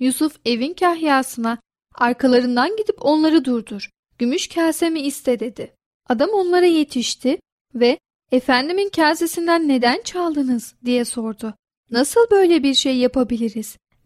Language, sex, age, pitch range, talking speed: Turkish, female, 10-29, 240-320 Hz, 115 wpm